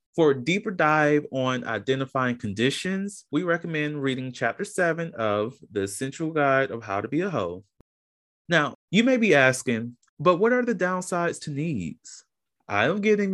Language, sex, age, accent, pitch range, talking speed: English, male, 30-49, American, 115-170 Hz, 160 wpm